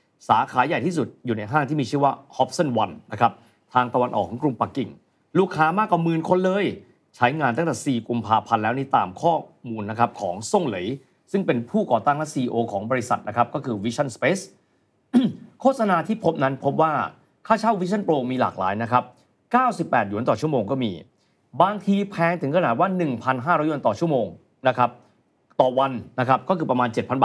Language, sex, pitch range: Thai, male, 115-165 Hz